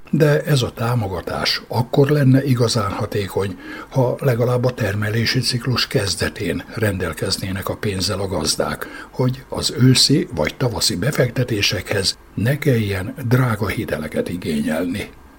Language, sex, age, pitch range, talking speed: Hungarian, male, 60-79, 100-130 Hz, 115 wpm